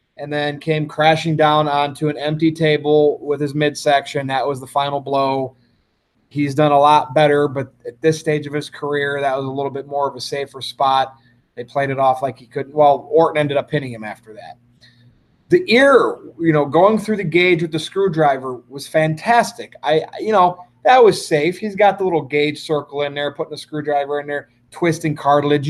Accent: American